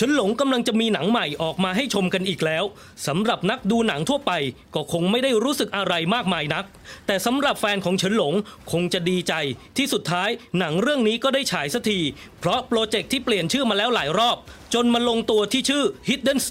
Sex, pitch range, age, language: male, 185-240 Hz, 20-39, English